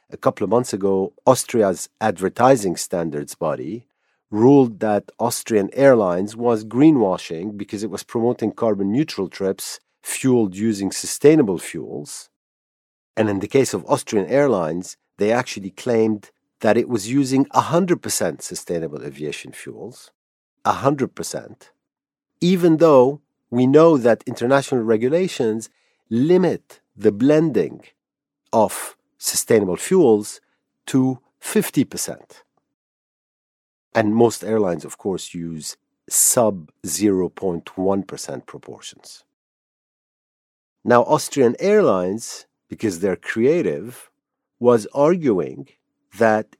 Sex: male